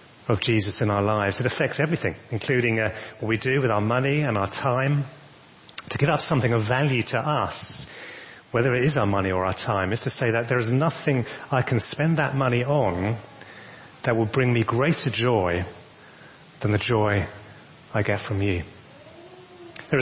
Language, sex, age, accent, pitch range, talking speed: English, male, 30-49, British, 110-140 Hz, 185 wpm